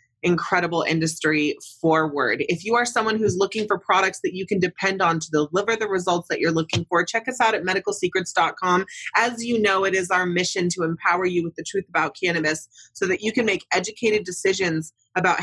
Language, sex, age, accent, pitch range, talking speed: English, female, 30-49, American, 155-195 Hz, 200 wpm